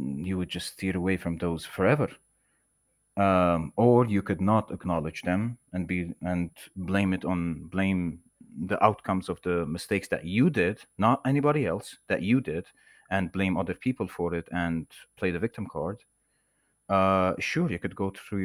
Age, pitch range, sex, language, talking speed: 30-49, 90-105 Hz, male, English, 170 wpm